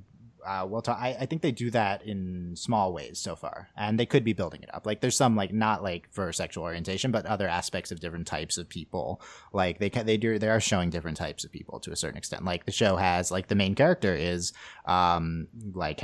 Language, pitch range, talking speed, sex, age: English, 90-110 Hz, 245 wpm, male, 30-49